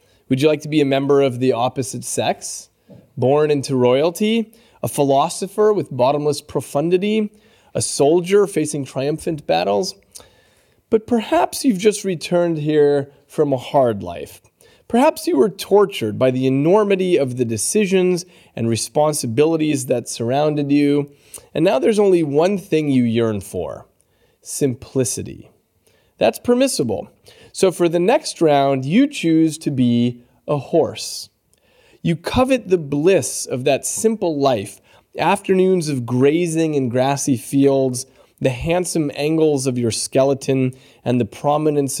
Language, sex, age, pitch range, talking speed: English, male, 30-49, 130-175 Hz, 135 wpm